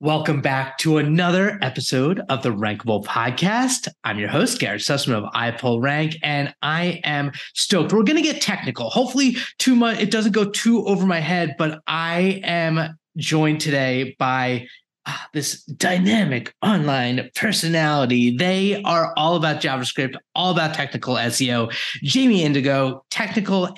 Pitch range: 130-180 Hz